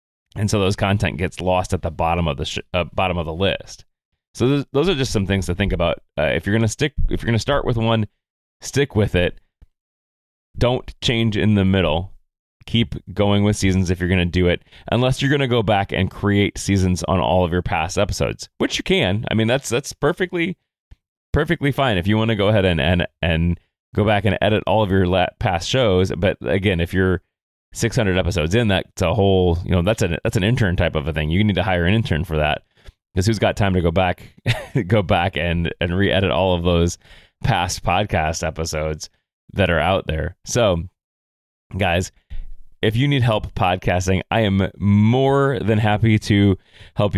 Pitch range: 90-115 Hz